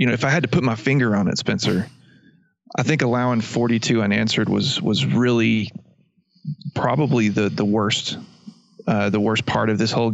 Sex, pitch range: male, 110-145 Hz